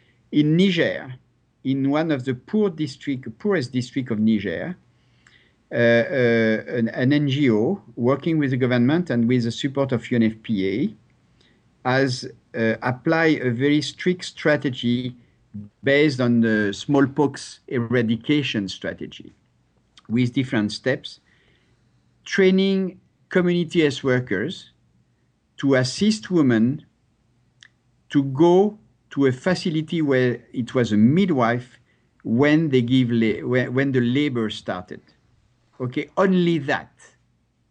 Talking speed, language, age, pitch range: 110 wpm, English, 50-69, 120-155 Hz